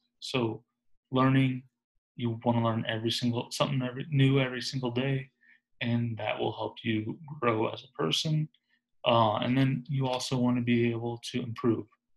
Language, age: English, 20-39